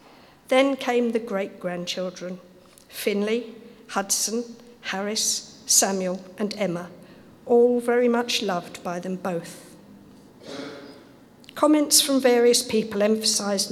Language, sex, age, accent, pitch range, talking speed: English, female, 50-69, British, 190-245 Hz, 95 wpm